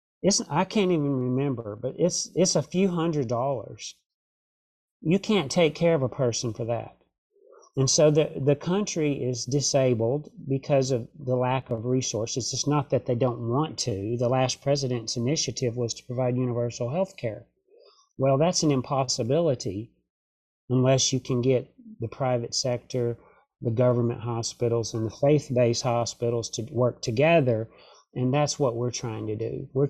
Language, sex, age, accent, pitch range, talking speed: English, male, 40-59, American, 120-145 Hz, 165 wpm